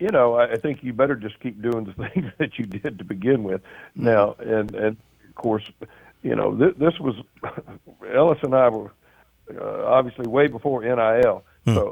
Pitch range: 110-125 Hz